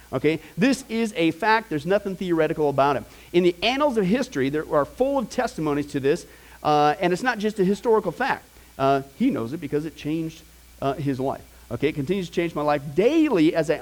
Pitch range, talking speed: 145-205 Hz, 215 wpm